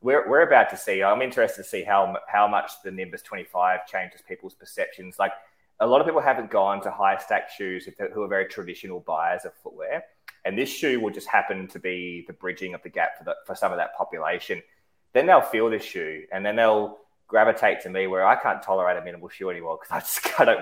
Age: 20-39